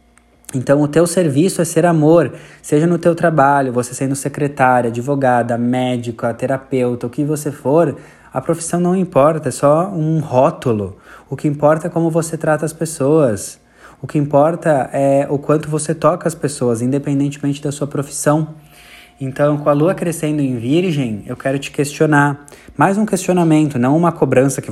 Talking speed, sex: 170 wpm, male